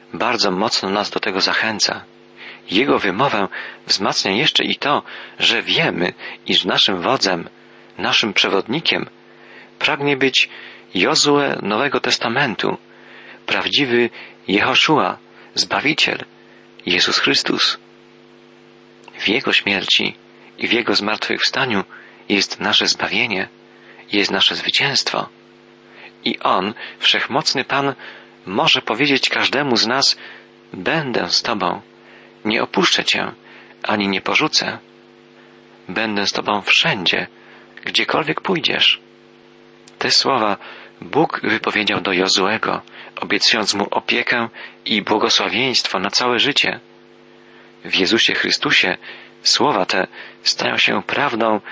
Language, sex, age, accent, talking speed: Polish, male, 40-59, native, 100 wpm